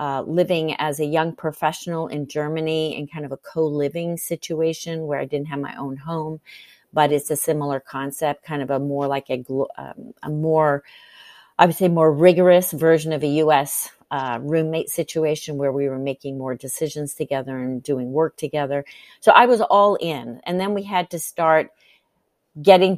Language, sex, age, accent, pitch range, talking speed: English, female, 40-59, American, 145-175 Hz, 185 wpm